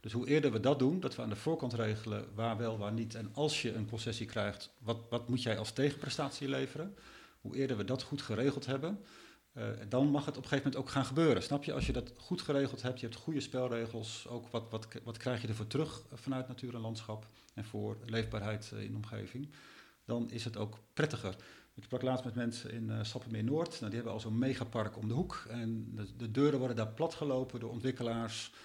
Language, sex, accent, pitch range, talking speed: Dutch, male, Dutch, 115-135 Hz, 225 wpm